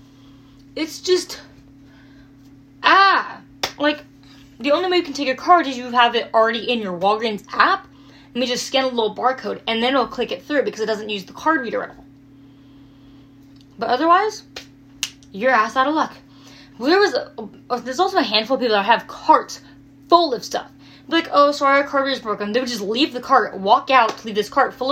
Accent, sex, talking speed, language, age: American, female, 205 wpm, English, 20-39